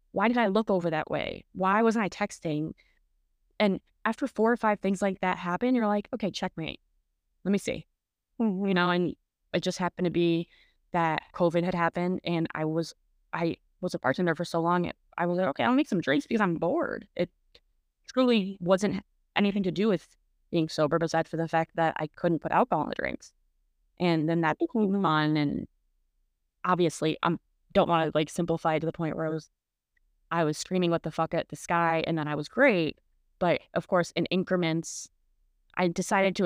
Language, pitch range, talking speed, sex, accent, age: English, 160-190 Hz, 200 wpm, female, American, 20-39